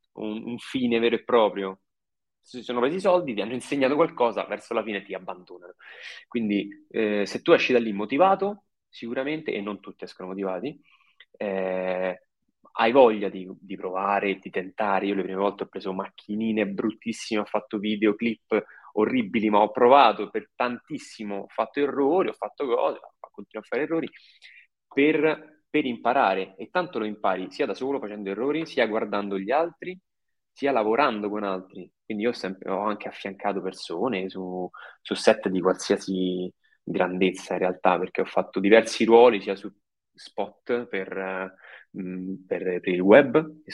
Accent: native